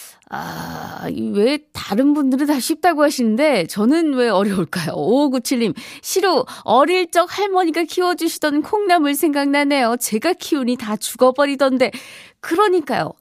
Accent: native